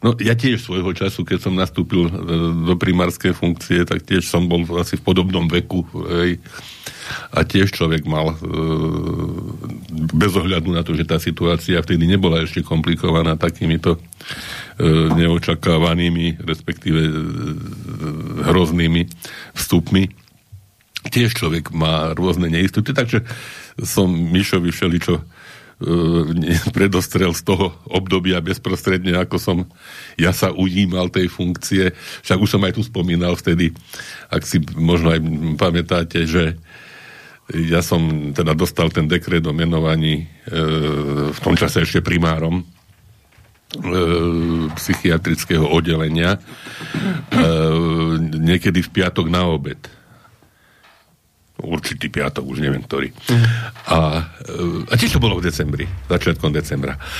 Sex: male